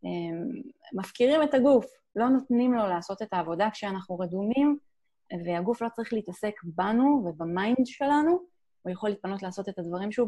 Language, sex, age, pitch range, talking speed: Hebrew, female, 30-49, 190-245 Hz, 145 wpm